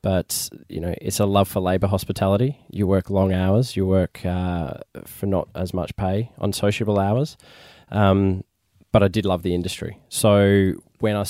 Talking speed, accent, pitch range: 180 wpm, Australian, 90-105 Hz